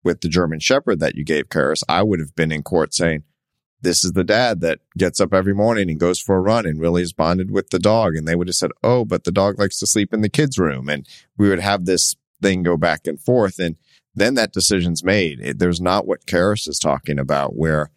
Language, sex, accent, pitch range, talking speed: English, male, American, 85-105 Hz, 250 wpm